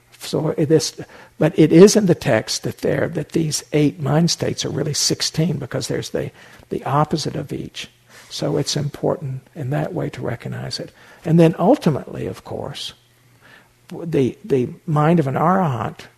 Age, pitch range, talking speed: 60-79, 135-160 Hz, 165 wpm